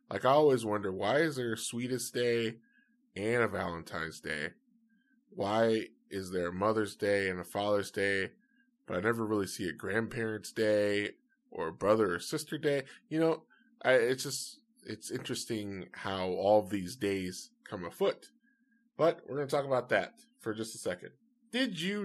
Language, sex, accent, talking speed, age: English, male, American, 175 wpm, 20-39